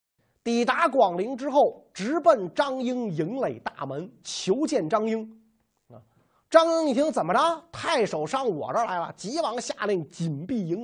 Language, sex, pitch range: Chinese, male, 165-270 Hz